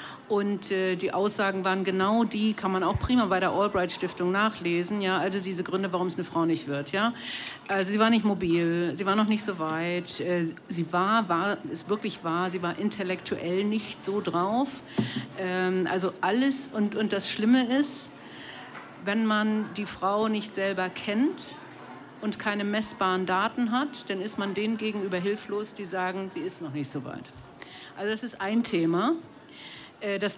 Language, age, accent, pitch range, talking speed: German, 50-69, German, 185-215 Hz, 180 wpm